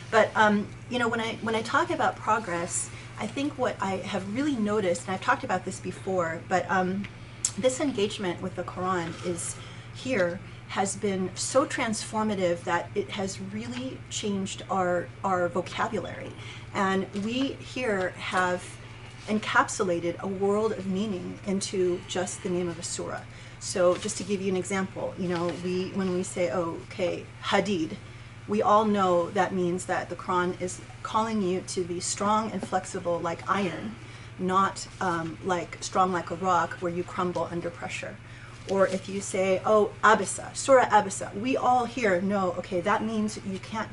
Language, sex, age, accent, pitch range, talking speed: English, female, 30-49, American, 175-210 Hz, 170 wpm